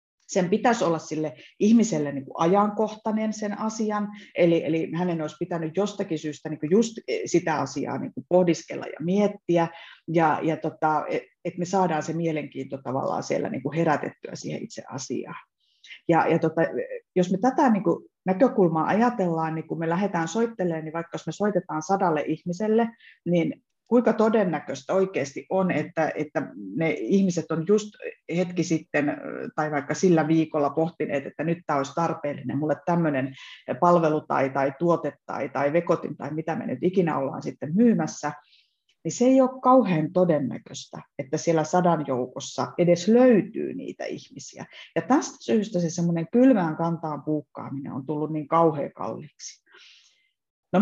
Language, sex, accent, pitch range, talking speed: Finnish, female, native, 155-200 Hz, 155 wpm